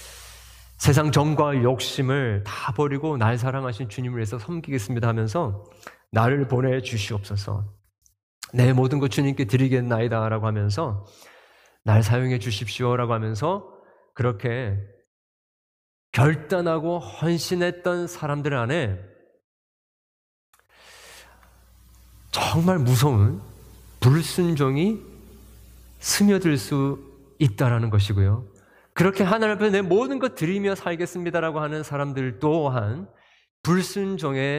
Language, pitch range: Korean, 105-150 Hz